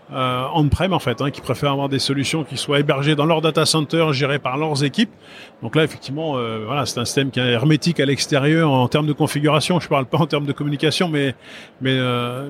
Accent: French